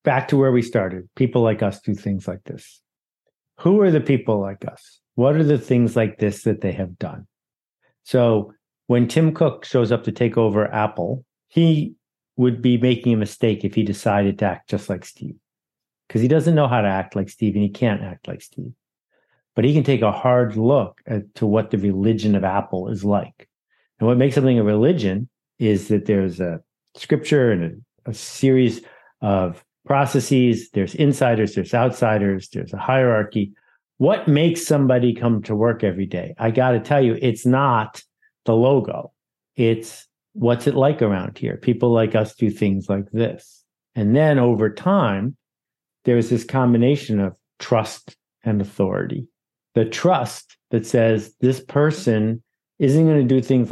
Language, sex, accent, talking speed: English, male, American, 175 wpm